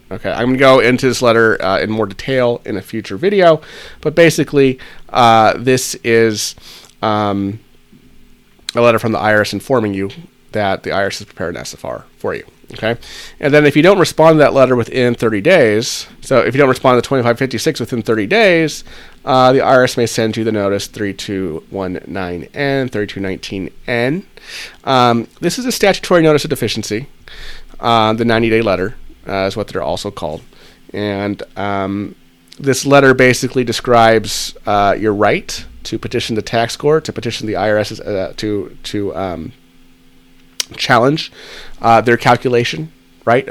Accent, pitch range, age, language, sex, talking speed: American, 100-130 Hz, 30-49, English, male, 160 wpm